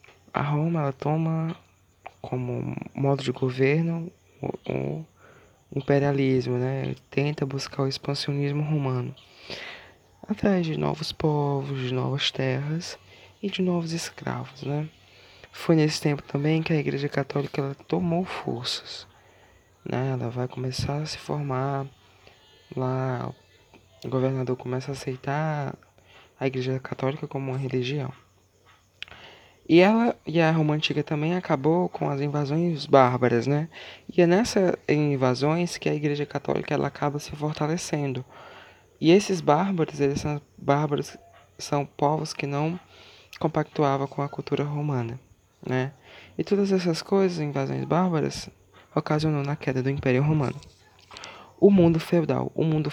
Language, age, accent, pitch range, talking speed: English, 20-39, Brazilian, 130-155 Hz, 130 wpm